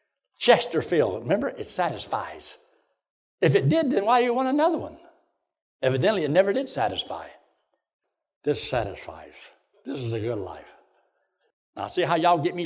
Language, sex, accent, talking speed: English, male, American, 150 wpm